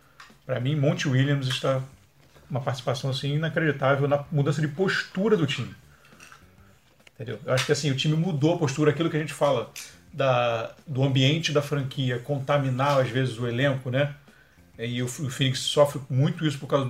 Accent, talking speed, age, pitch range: Brazilian, 175 wpm, 40-59, 130-145 Hz